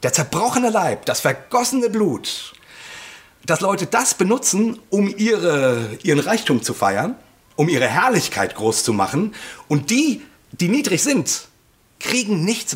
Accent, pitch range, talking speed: German, 135-180 Hz, 135 wpm